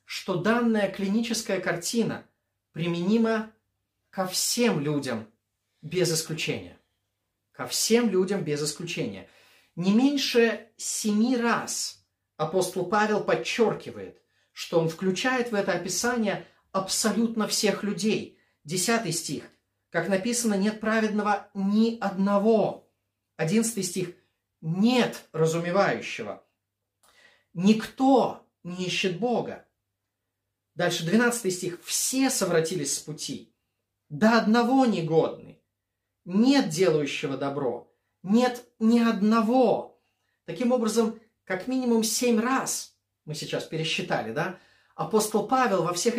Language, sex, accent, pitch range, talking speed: Russian, male, native, 160-220 Hz, 100 wpm